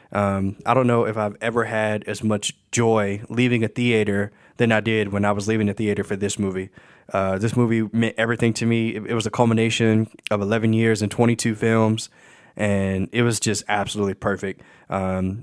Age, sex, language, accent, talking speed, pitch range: 20-39, male, English, American, 200 wpm, 105-120 Hz